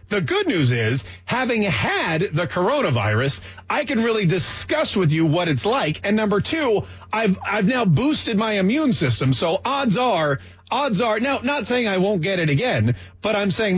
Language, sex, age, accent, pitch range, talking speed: English, male, 40-59, American, 130-195 Hz, 205 wpm